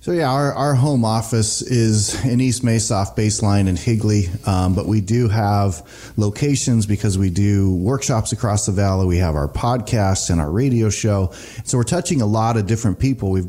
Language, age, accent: English, 30-49, American